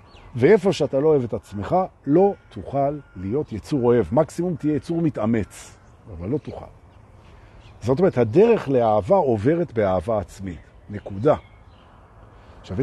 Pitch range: 95-155 Hz